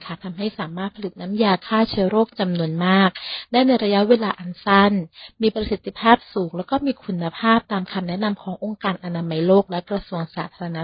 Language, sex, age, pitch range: English, female, 30-49, 185-230 Hz